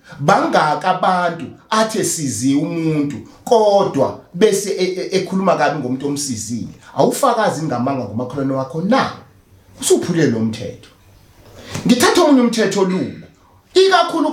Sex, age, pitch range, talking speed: male, 40-59, 125-190 Hz, 115 wpm